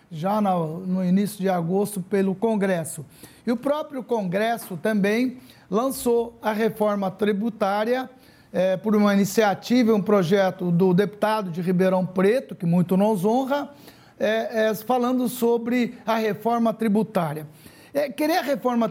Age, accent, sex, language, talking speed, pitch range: 60-79, Brazilian, male, Portuguese, 135 wpm, 190-240 Hz